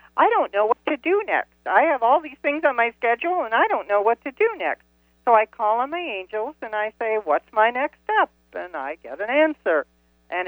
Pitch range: 180-270 Hz